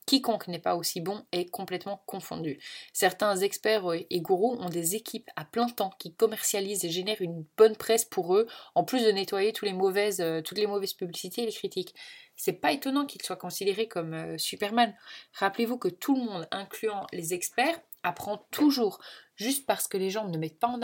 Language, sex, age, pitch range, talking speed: French, female, 20-39, 180-230 Hz, 195 wpm